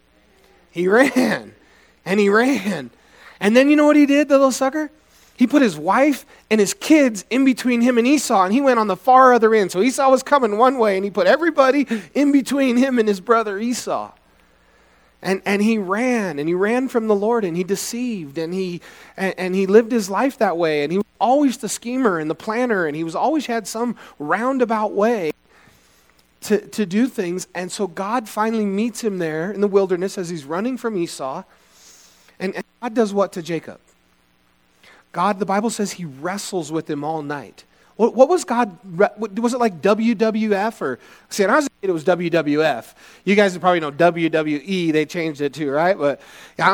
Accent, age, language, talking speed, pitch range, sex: American, 30-49, English, 205 wpm, 170-240 Hz, male